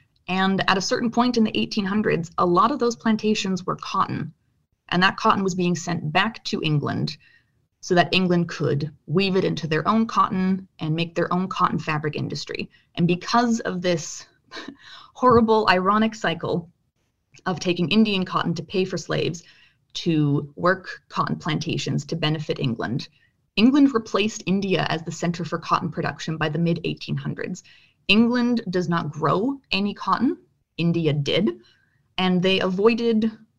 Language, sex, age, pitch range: English, female, 20-39, 155-200 Hz